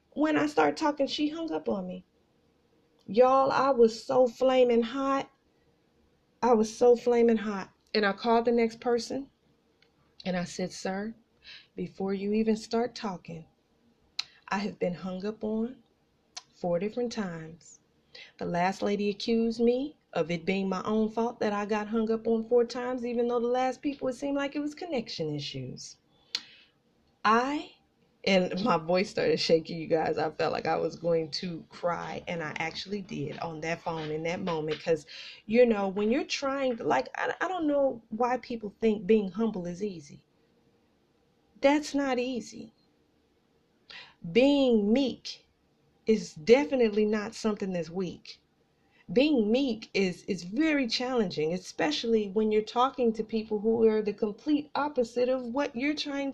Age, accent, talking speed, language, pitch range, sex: 40-59, American, 160 wpm, English, 190-250 Hz, female